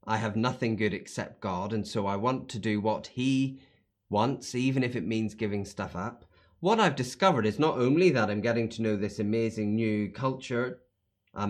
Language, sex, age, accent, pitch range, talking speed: English, male, 30-49, British, 100-155 Hz, 200 wpm